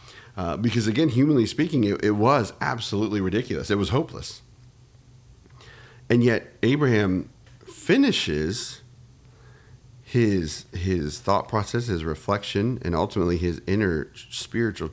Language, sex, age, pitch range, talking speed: English, male, 40-59, 100-125 Hz, 115 wpm